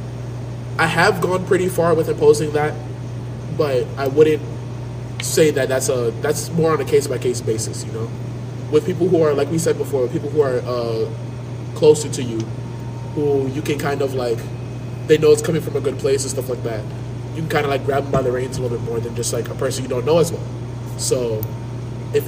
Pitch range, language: 120-140 Hz, English